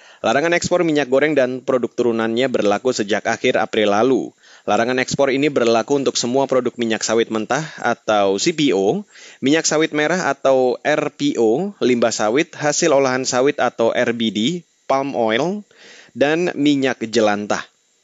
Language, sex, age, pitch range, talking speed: Indonesian, male, 20-39, 115-145 Hz, 135 wpm